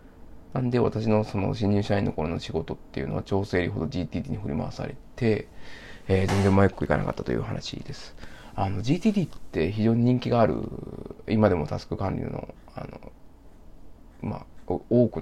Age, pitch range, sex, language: 20-39, 85-115 Hz, male, Japanese